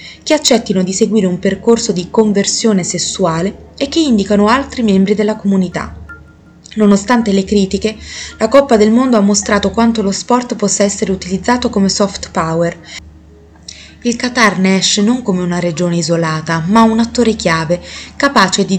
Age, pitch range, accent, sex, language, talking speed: 20-39, 175-215 Hz, native, female, Italian, 155 wpm